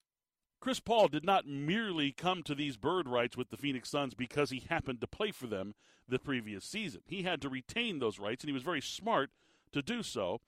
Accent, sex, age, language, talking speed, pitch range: American, male, 40-59, English, 220 wpm, 125-155 Hz